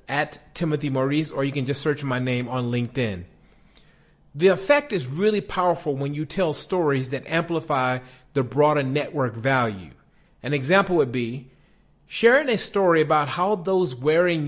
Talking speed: 160 wpm